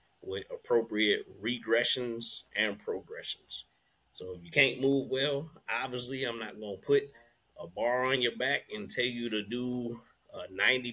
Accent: American